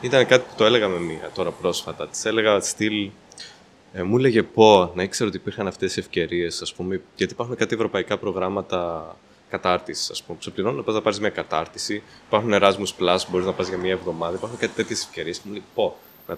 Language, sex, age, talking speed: Greek, male, 20-39, 210 wpm